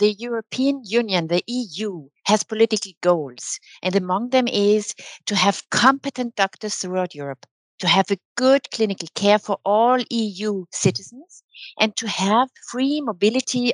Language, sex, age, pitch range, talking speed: English, female, 60-79, 170-225 Hz, 145 wpm